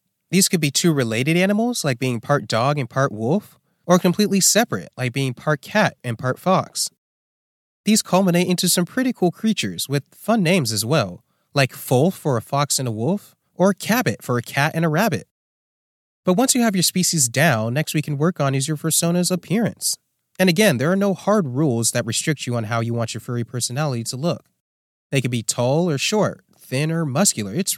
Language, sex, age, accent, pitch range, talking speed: English, male, 30-49, American, 125-185 Hz, 205 wpm